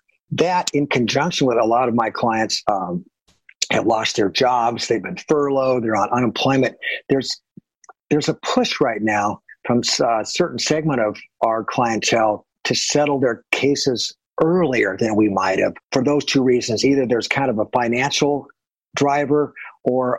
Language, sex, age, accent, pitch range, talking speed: English, male, 50-69, American, 120-155 Hz, 160 wpm